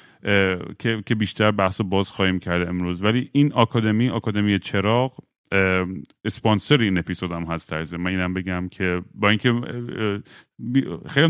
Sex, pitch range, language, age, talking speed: male, 90-110 Hz, Persian, 30-49, 120 wpm